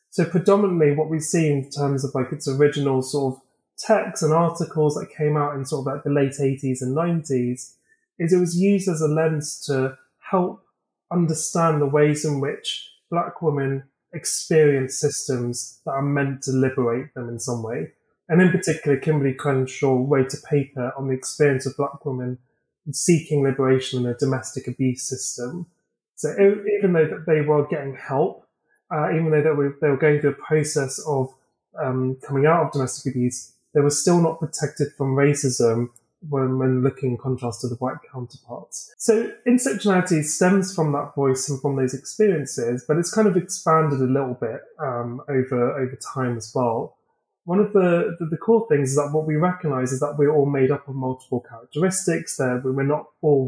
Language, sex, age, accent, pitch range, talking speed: English, male, 30-49, British, 130-160 Hz, 185 wpm